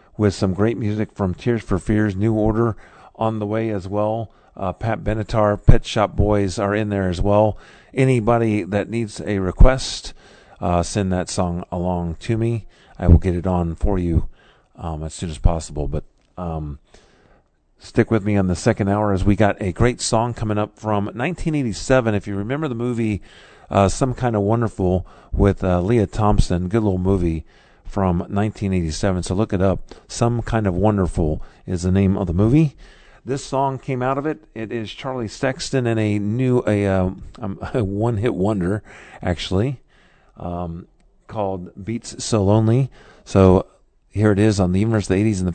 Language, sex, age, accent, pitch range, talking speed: English, male, 40-59, American, 95-115 Hz, 180 wpm